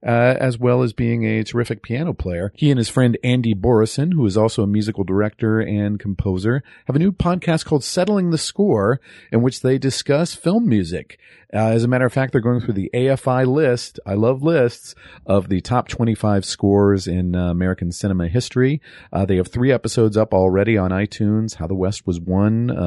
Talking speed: 200 wpm